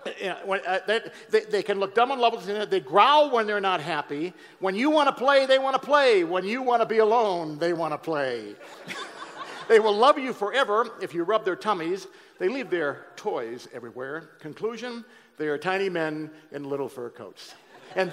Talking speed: 210 wpm